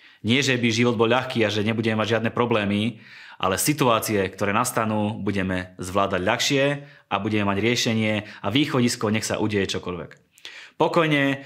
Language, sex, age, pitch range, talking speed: Slovak, male, 30-49, 100-120 Hz, 155 wpm